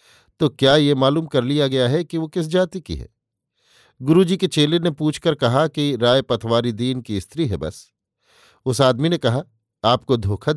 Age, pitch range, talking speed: 50-69, 115-145 Hz, 195 wpm